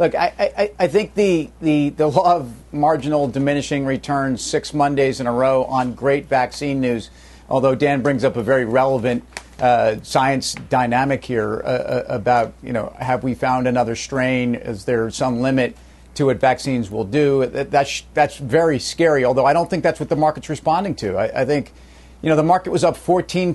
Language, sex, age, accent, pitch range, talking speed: English, male, 50-69, American, 130-150 Hz, 195 wpm